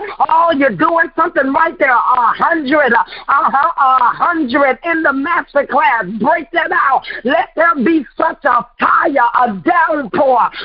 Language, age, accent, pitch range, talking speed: English, 50-69, American, 265-330 Hz, 150 wpm